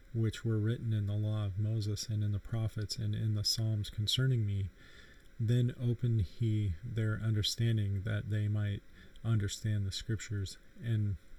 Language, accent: English, American